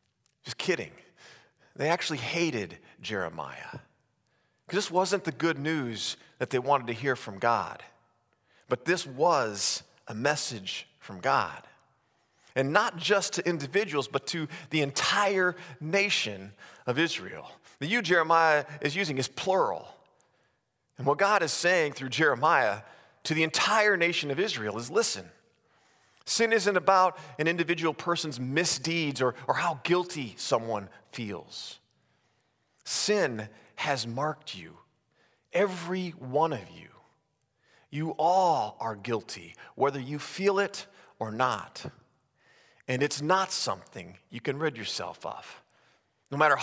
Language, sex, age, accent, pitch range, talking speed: English, male, 40-59, American, 140-190 Hz, 130 wpm